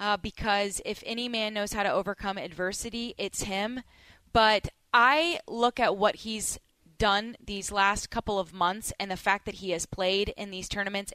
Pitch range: 195-235 Hz